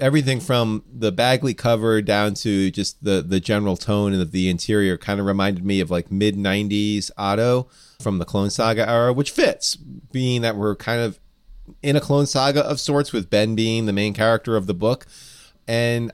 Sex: male